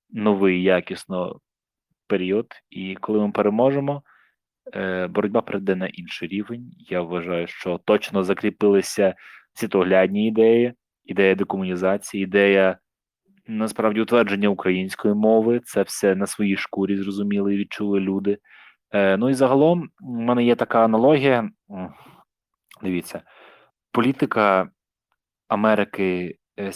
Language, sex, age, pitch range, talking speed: Ukrainian, male, 20-39, 95-120 Hz, 105 wpm